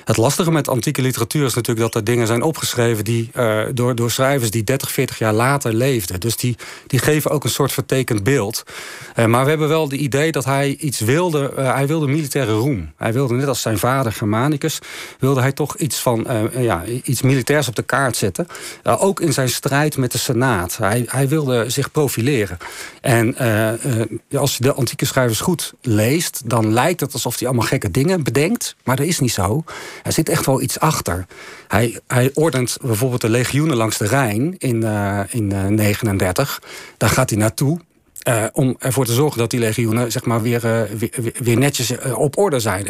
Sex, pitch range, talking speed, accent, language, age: male, 115-140 Hz, 205 wpm, Dutch, Dutch, 40-59